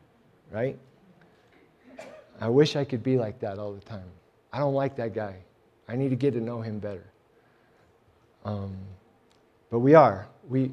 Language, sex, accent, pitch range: English, male, American, 110-140 Hz